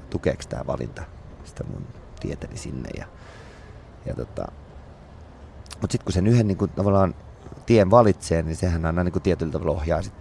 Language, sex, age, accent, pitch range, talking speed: English, male, 30-49, Finnish, 80-100 Hz, 165 wpm